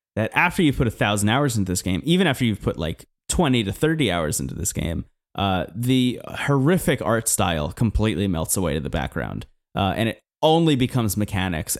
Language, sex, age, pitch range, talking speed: English, male, 20-39, 105-130 Hz, 200 wpm